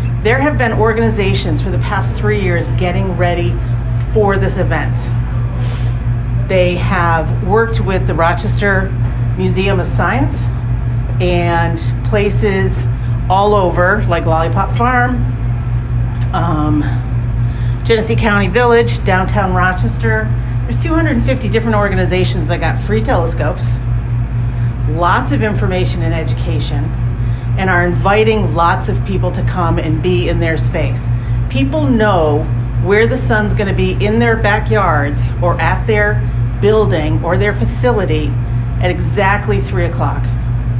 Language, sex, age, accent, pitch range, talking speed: English, female, 40-59, American, 110-120 Hz, 120 wpm